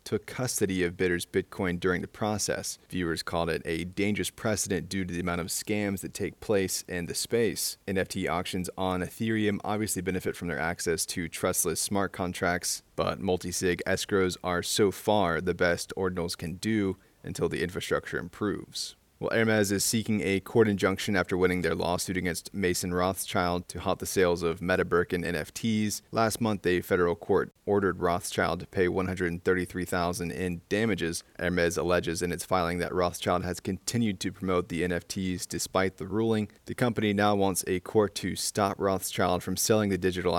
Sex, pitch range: male, 90-100 Hz